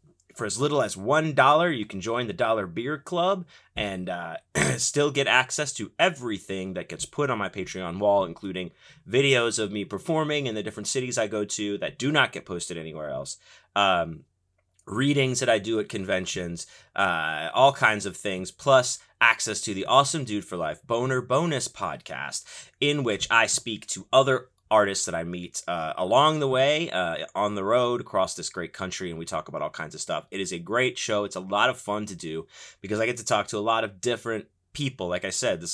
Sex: male